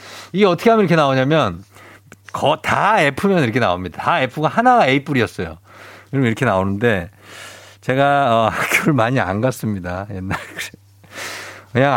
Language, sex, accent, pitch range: Korean, male, native, 100-170 Hz